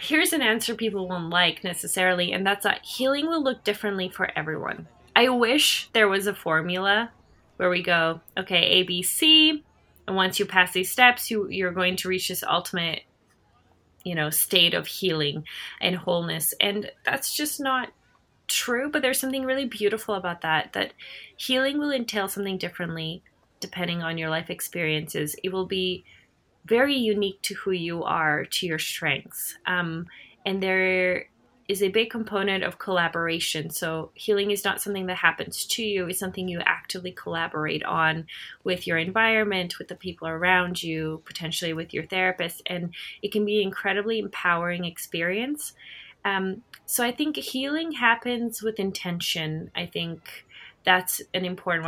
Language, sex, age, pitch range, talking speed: English, female, 20-39, 170-210 Hz, 160 wpm